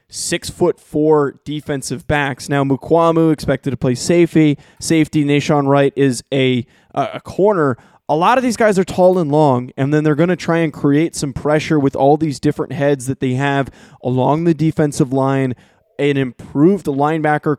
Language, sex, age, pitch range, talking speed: English, male, 20-39, 135-160 Hz, 175 wpm